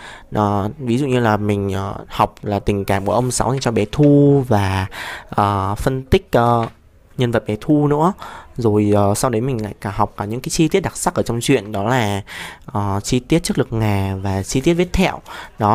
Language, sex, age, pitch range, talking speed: Vietnamese, male, 20-39, 105-135 Hz, 210 wpm